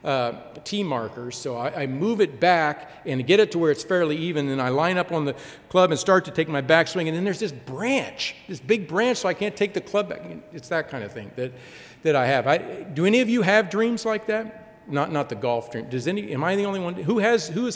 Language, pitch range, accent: English, 135-180 Hz, American